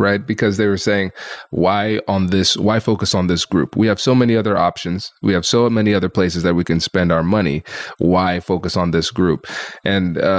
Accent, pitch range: American, 90-105 Hz